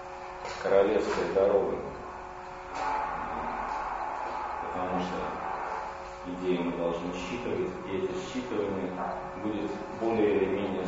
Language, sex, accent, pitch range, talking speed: Russian, male, native, 90-115 Hz, 85 wpm